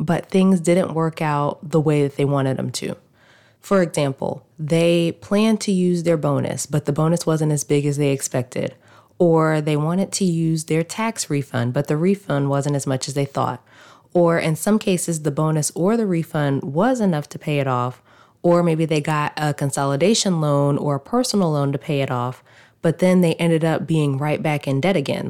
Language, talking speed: English, 205 wpm